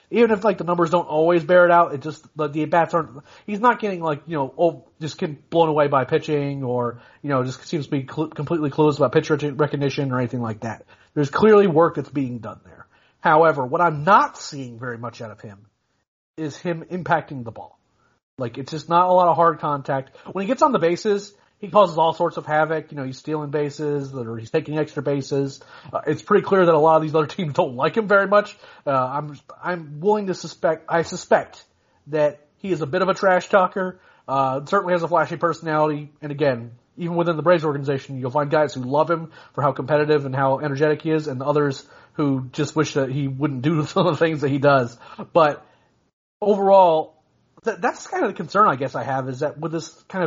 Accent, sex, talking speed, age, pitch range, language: American, male, 230 wpm, 30-49, 140-170 Hz, English